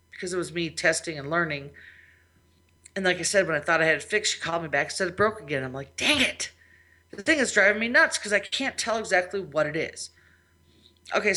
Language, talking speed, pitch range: English, 235 wpm, 155-225 Hz